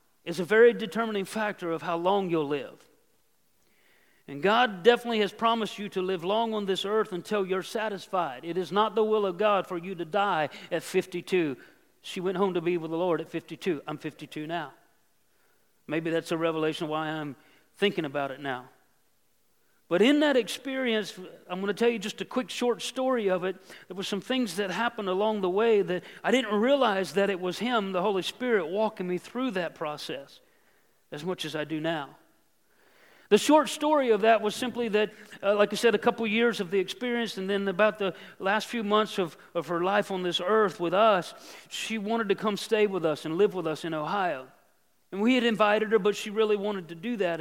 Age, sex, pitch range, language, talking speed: 40-59, male, 175-220 Hz, English, 210 wpm